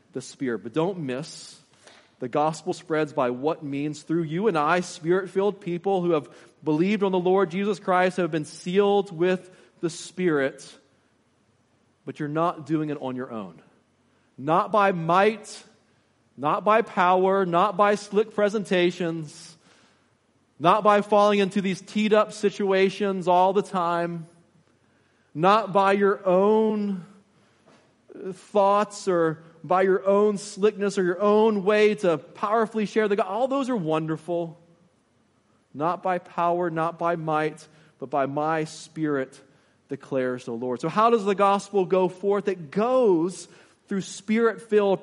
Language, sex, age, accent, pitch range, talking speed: English, male, 40-59, American, 160-205 Hz, 145 wpm